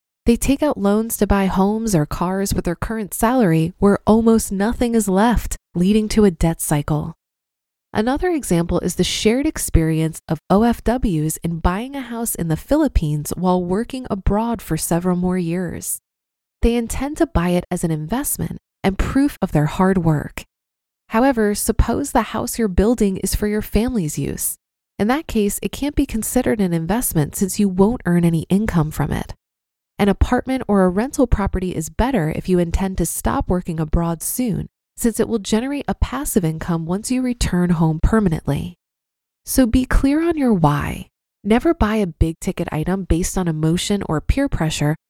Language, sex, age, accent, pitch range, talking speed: English, female, 20-39, American, 170-230 Hz, 175 wpm